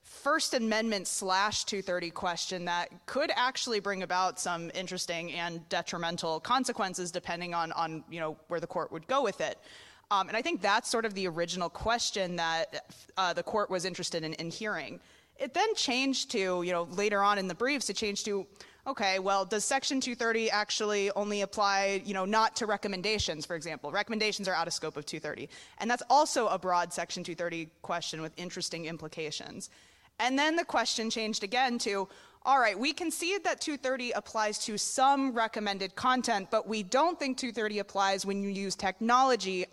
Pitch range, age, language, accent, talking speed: 180-225 Hz, 20-39, English, American, 185 wpm